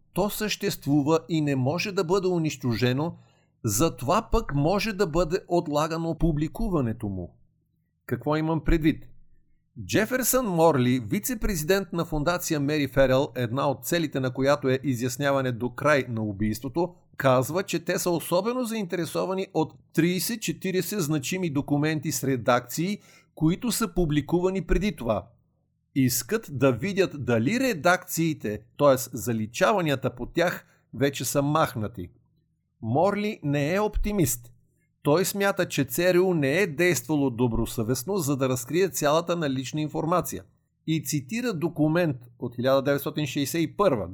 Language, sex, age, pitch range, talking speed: Bulgarian, male, 50-69, 135-180 Hz, 120 wpm